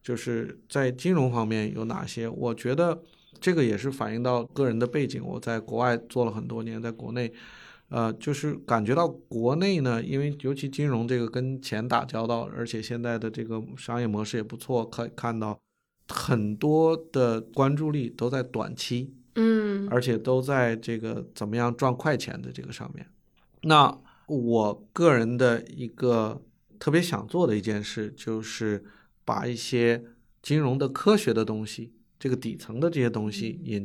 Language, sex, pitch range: Chinese, male, 115-135 Hz